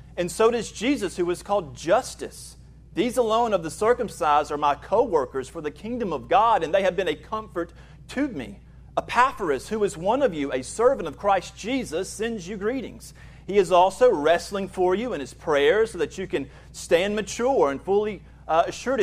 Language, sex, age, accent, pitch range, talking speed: English, male, 40-59, American, 175-230 Hz, 195 wpm